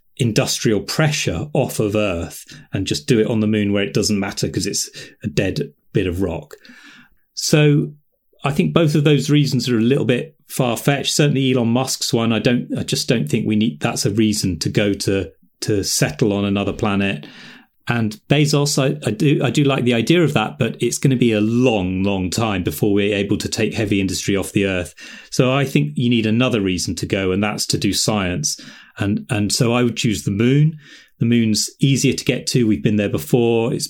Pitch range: 100-135 Hz